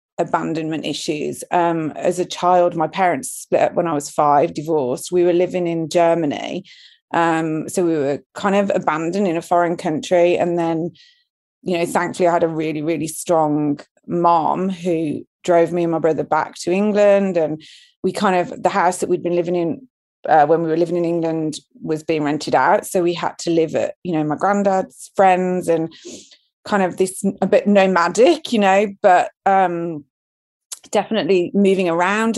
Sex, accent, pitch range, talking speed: female, British, 165-195 Hz, 180 wpm